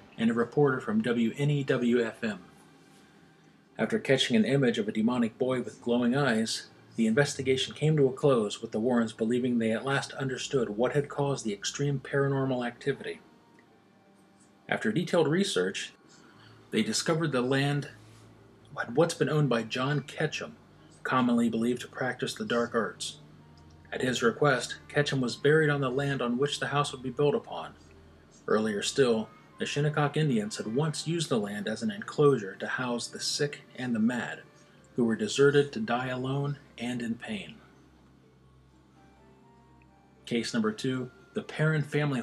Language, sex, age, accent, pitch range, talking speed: English, male, 40-59, American, 115-145 Hz, 155 wpm